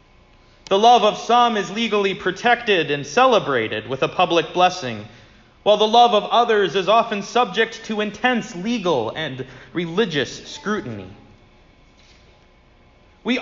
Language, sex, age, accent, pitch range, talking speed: English, male, 30-49, American, 135-210 Hz, 125 wpm